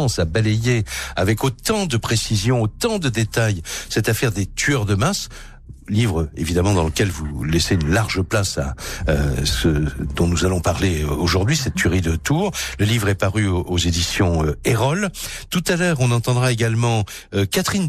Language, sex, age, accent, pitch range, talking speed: French, male, 60-79, French, 90-115 Hz, 180 wpm